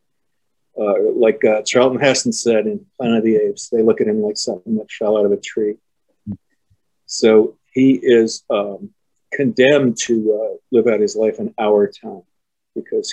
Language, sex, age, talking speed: English, male, 50-69, 175 wpm